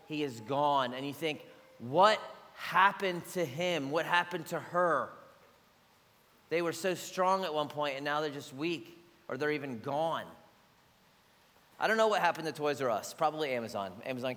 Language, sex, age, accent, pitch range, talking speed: English, male, 30-49, American, 150-200 Hz, 175 wpm